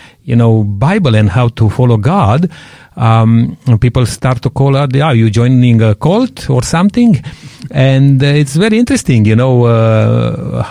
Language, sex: English, male